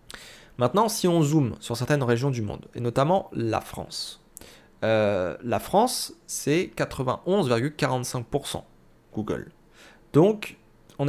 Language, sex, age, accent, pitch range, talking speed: French, male, 30-49, French, 115-150 Hz, 115 wpm